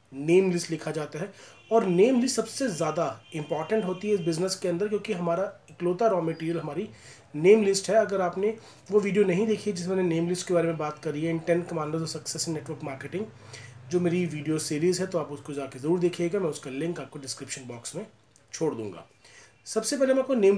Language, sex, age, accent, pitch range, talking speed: Hindi, male, 30-49, native, 155-215 Hz, 215 wpm